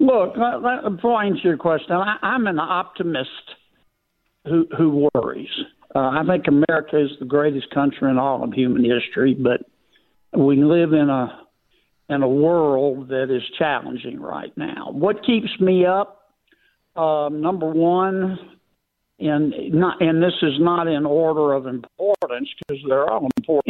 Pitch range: 145-185 Hz